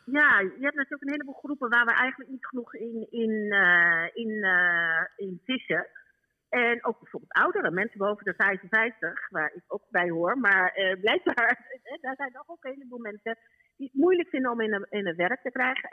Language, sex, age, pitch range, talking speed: Dutch, female, 50-69, 180-245 Hz, 205 wpm